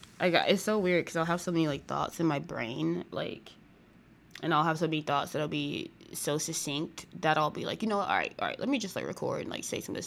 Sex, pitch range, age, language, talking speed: female, 150-185 Hz, 20-39, English, 285 wpm